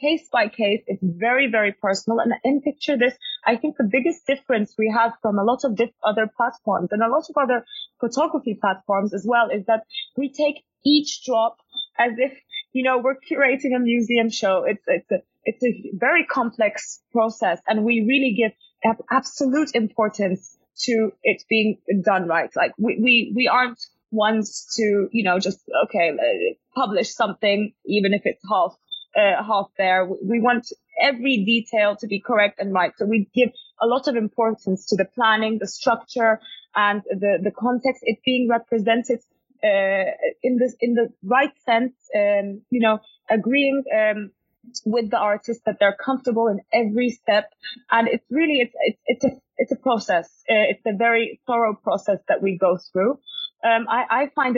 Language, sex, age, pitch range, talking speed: English, female, 20-39, 215-255 Hz, 180 wpm